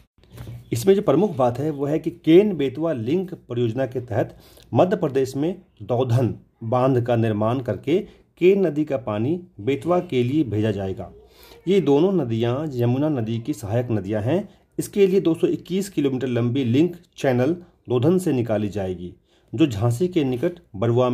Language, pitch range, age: Hindi, 110-160 Hz, 40-59